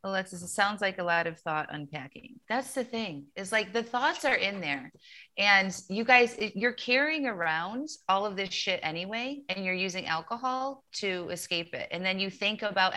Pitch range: 170-215 Hz